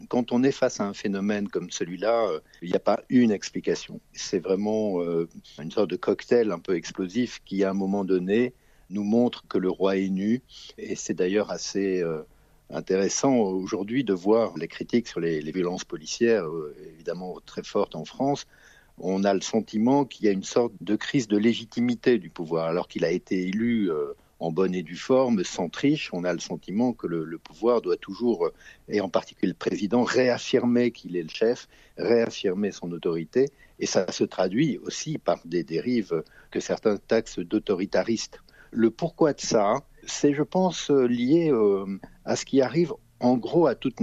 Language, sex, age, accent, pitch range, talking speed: French, male, 50-69, French, 95-130 Hz, 190 wpm